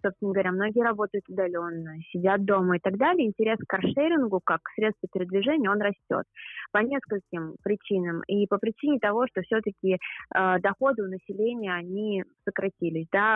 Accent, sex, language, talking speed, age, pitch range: native, female, Russian, 155 wpm, 20-39, 190-215 Hz